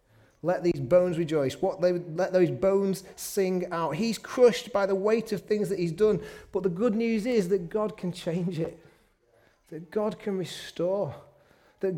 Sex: male